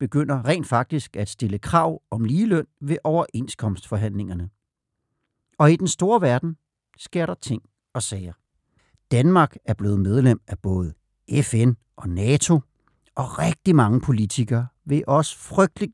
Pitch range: 110-150 Hz